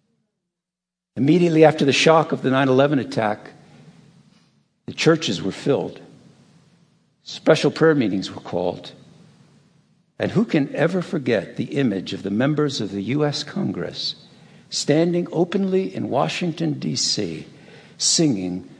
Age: 60-79